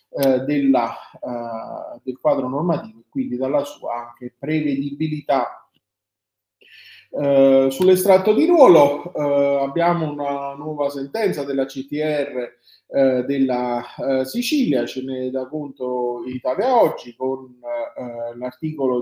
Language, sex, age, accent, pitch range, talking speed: Italian, male, 30-49, native, 125-155 Hz, 115 wpm